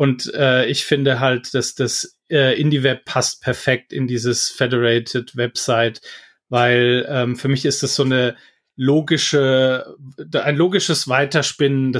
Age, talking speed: 30-49, 135 wpm